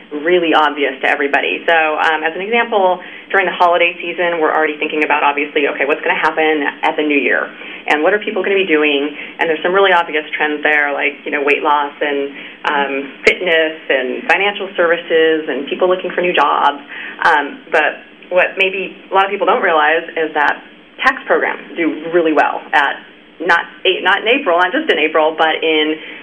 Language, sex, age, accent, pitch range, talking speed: English, female, 30-49, American, 150-175 Hz, 200 wpm